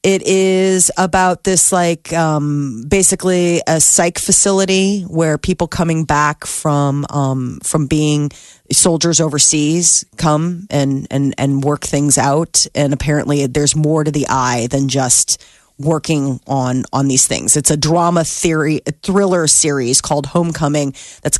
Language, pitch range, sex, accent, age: Japanese, 140-185 Hz, female, American, 30-49